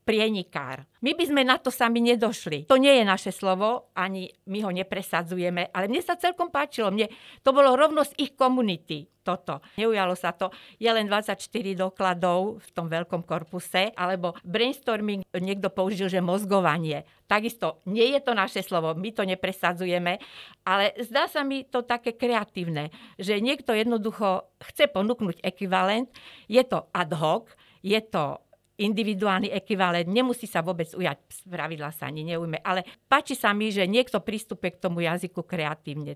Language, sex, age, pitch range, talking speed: Slovak, female, 50-69, 180-225 Hz, 160 wpm